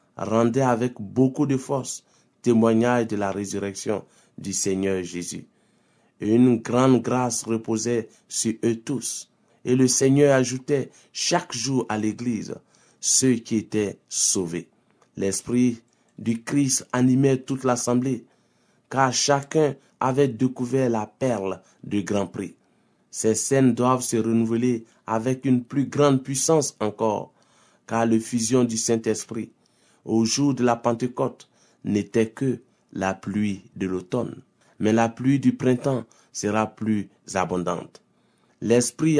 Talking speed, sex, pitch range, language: 125 wpm, male, 110-130 Hz, French